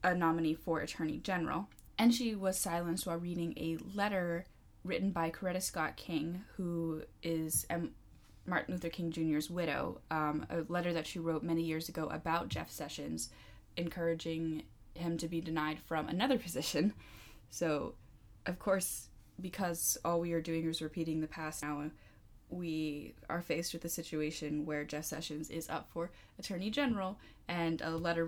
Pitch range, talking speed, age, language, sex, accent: 155-180 Hz, 160 wpm, 10-29, English, female, American